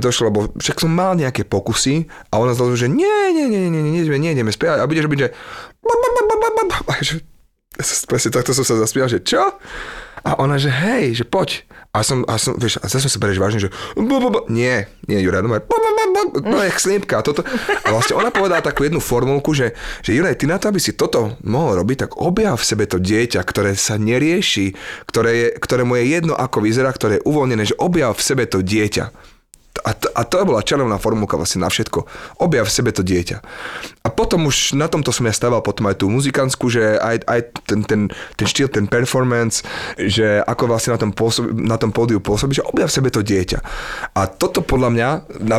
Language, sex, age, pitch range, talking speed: Slovak, male, 30-49, 110-145 Hz, 200 wpm